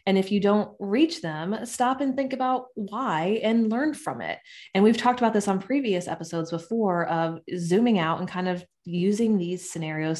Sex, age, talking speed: female, 20-39, 195 wpm